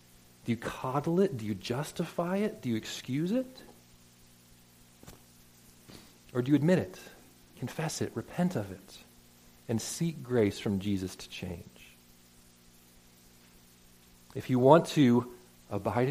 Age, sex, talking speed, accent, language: 40-59, male, 125 wpm, American, English